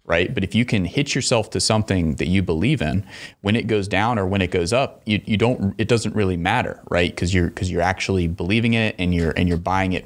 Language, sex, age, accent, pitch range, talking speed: English, male, 30-49, American, 85-105 Hz, 255 wpm